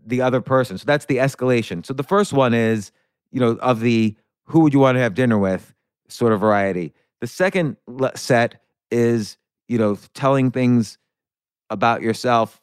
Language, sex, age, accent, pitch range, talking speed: English, male, 30-49, American, 110-135 Hz, 175 wpm